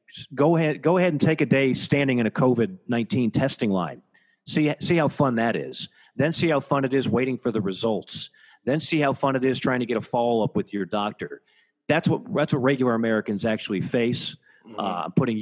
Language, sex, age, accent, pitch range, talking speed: English, male, 40-59, American, 115-145 Hz, 215 wpm